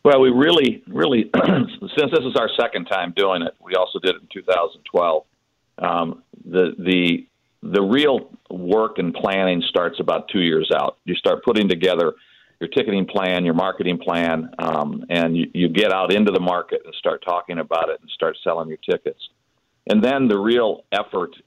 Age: 50-69